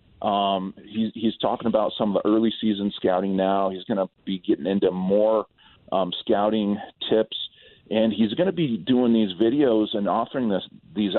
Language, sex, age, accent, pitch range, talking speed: English, male, 40-59, American, 95-110 Hz, 180 wpm